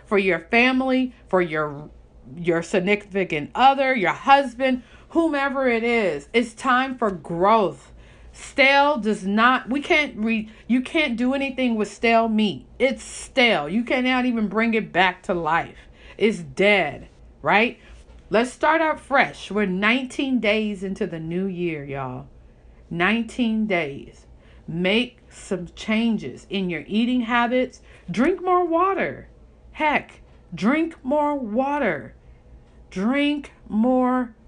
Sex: female